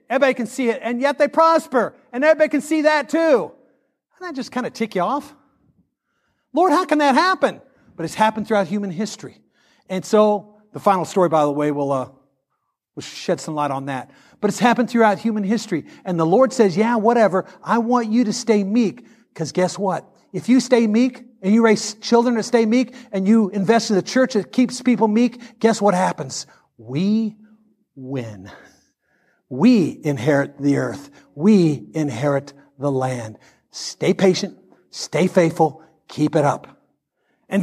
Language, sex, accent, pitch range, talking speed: English, male, American, 190-275 Hz, 180 wpm